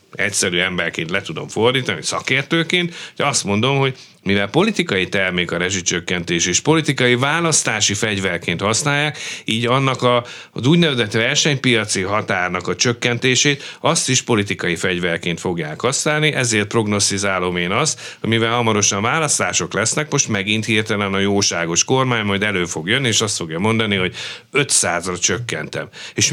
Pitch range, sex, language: 100-140 Hz, male, Hungarian